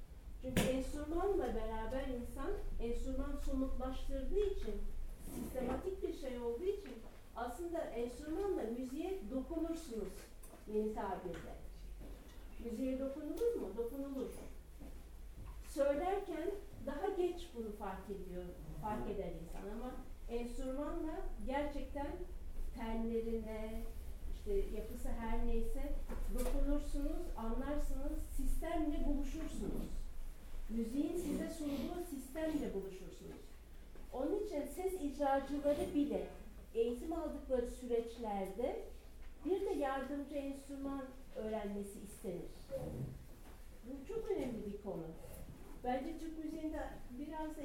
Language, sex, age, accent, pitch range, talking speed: Turkish, female, 50-69, native, 220-300 Hz, 90 wpm